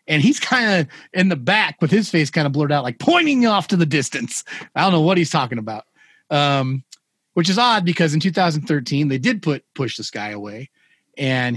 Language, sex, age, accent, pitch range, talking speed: English, male, 30-49, American, 125-165 Hz, 220 wpm